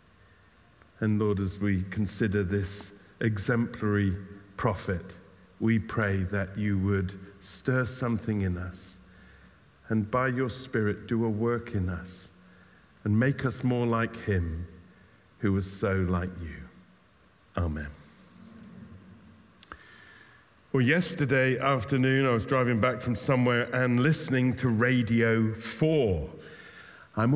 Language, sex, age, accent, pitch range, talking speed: English, male, 50-69, British, 105-135 Hz, 115 wpm